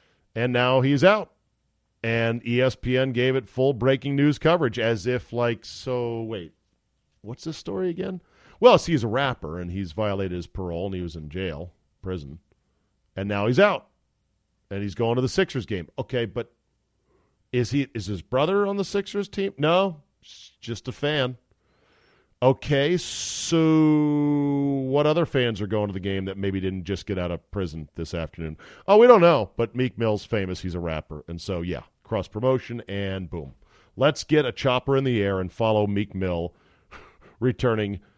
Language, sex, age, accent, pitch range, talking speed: English, male, 40-59, American, 95-130 Hz, 175 wpm